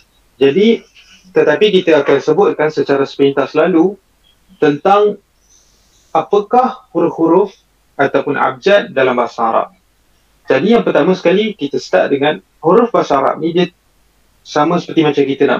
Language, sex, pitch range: Malay, male, 140-185 Hz